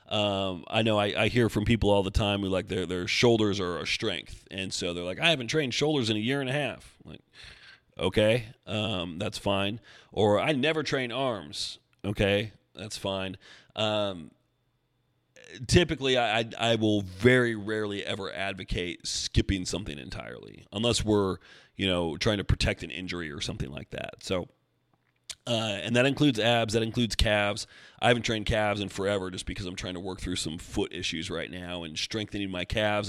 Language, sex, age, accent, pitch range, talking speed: English, male, 30-49, American, 95-120 Hz, 190 wpm